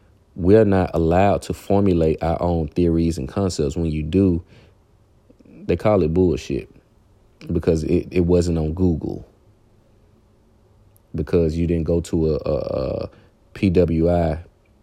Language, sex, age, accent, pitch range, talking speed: English, male, 30-49, American, 85-100 Hz, 130 wpm